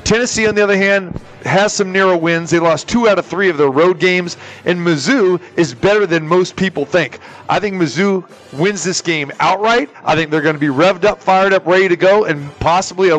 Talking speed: 230 wpm